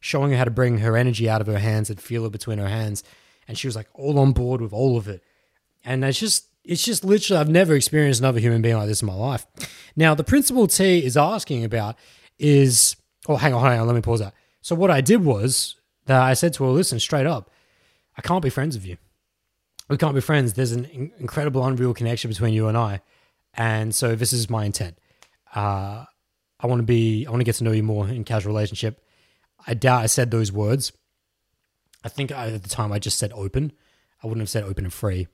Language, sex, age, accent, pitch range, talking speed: English, male, 20-39, Australian, 110-135 Hz, 235 wpm